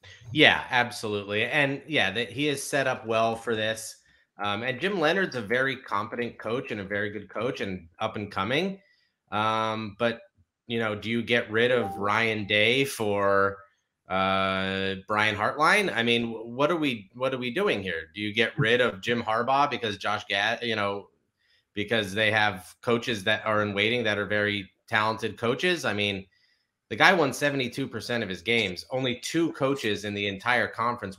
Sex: male